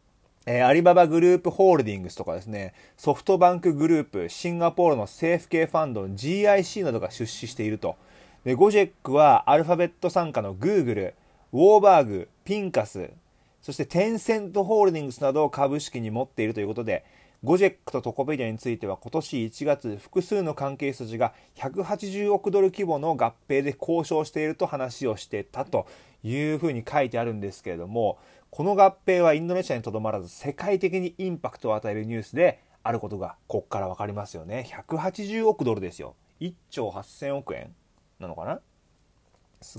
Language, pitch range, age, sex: Japanese, 120-185 Hz, 30-49, male